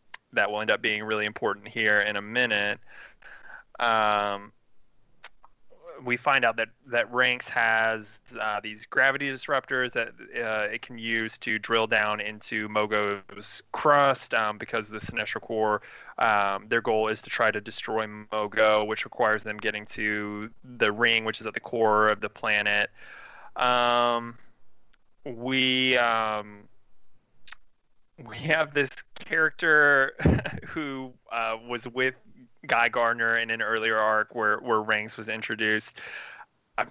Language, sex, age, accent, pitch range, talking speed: English, male, 20-39, American, 105-120 Hz, 140 wpm